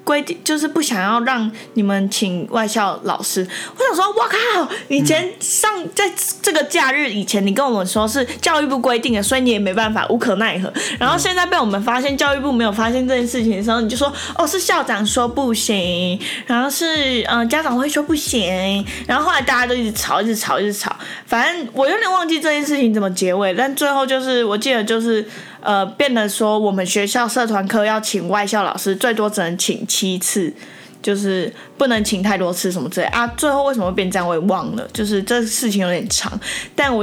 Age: 20-39